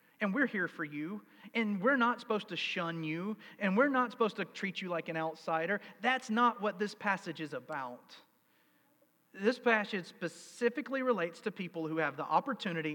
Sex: male